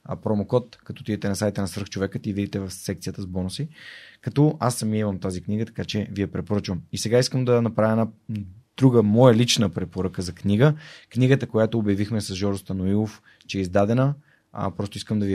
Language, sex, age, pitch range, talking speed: Bulgarian, male, 30-49, 100-120 Hz, 190 wpm